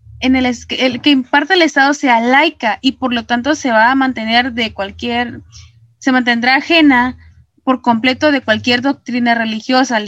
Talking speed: 175 wpm